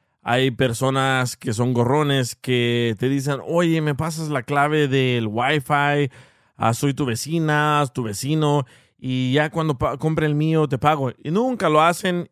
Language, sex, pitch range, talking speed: Spanish, male, 125-155 Hz, 170 wpm